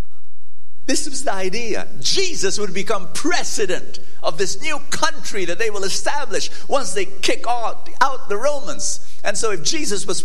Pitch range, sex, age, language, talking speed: 195-325 Hz, male, 50-69, English, 160 wpm